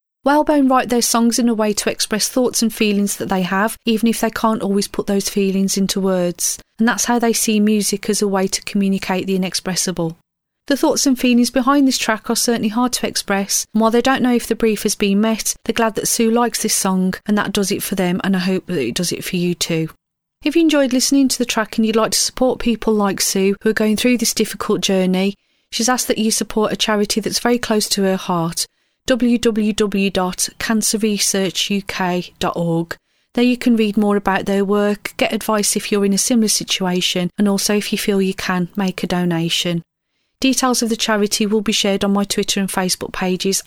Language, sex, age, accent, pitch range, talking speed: English, female, 30-49, British, 195-235 Hz, 220 wpm